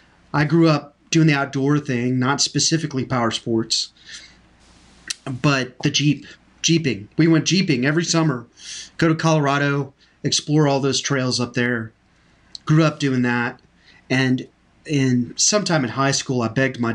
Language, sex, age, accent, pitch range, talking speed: English, male, 30-49, American, 125-150 Hz, 150 wpm